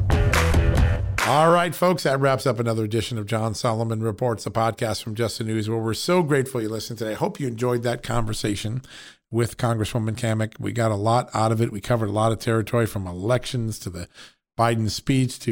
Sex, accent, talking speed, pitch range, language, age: male, American, 210 wpm, 110-125 Hz, English, 50-69